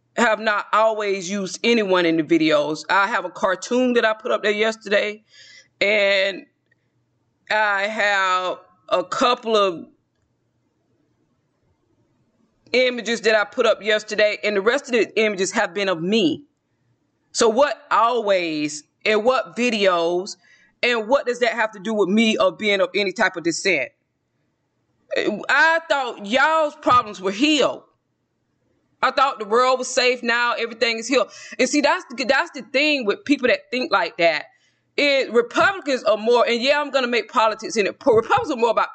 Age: 20-39